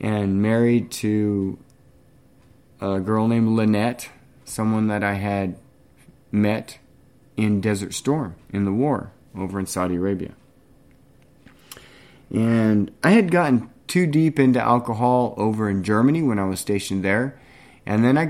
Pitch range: 95-125 Hz